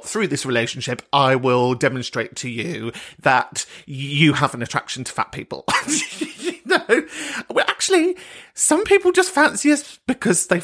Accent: British